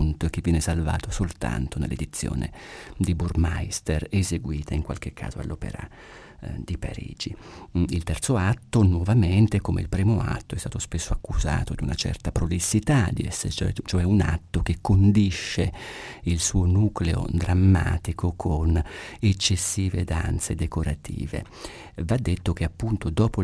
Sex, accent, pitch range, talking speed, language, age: male, native, 85-105 Hz, 125 wpm, Italian, 40-59